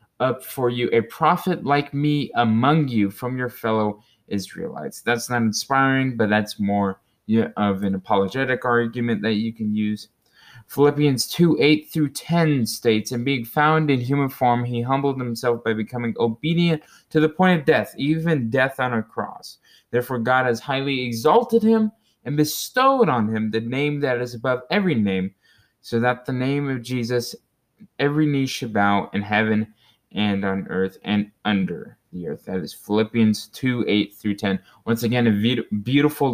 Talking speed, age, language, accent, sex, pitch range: 170 wpm, 20-39, English, American, male, 110-140 Hz